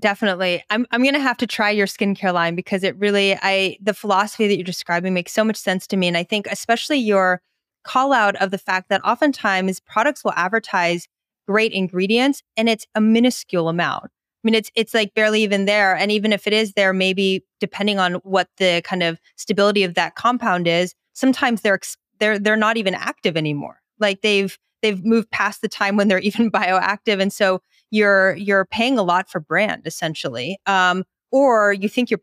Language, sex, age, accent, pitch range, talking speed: English, female, 20-39, American, 185-215 Hz, 205 wpm